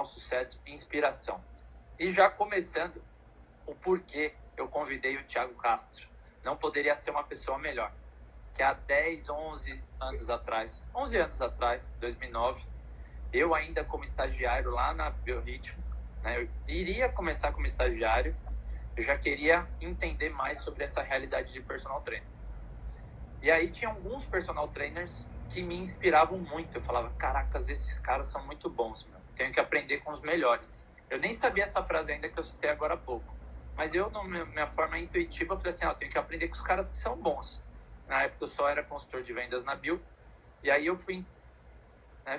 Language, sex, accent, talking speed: Portuguese, male, Brazilian, 175 wpm